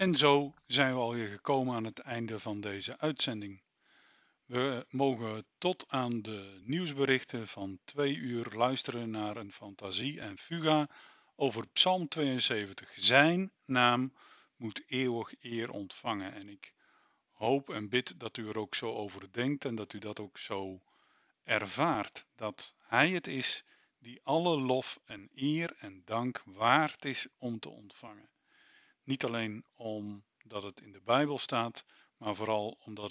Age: 50-69